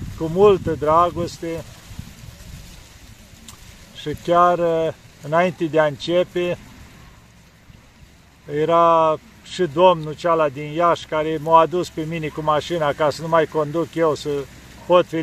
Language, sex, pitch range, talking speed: Romanian, male, 150-175 Hz, 120 wpm